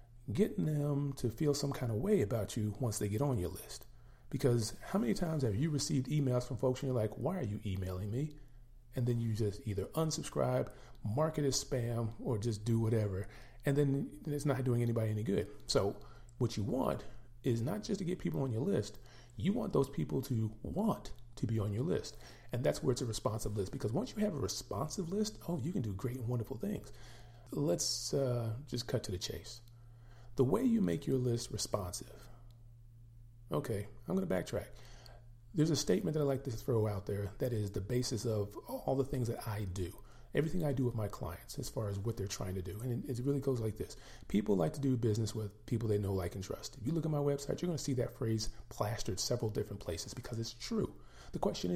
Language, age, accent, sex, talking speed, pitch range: English, 40-59, American, male, 225 wpm, 110-140 Hz